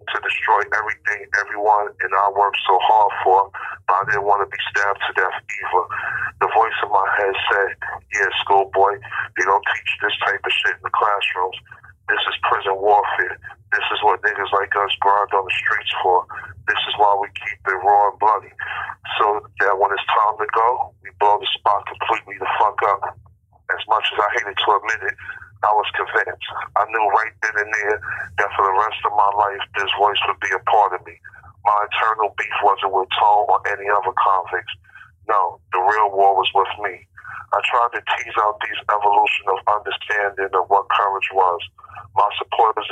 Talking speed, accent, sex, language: 195 wpm, American, male, English